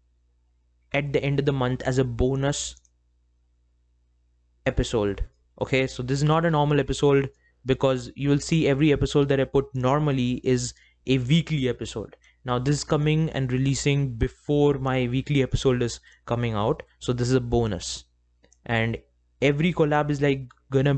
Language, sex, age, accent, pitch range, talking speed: English, male, 20-39, Indian, 115-140 Hz, 160 wpm